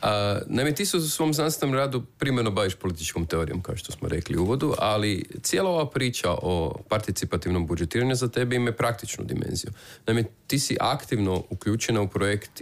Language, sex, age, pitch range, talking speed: Croatian, male, 30-49, 90-115 Hz, 170 wpm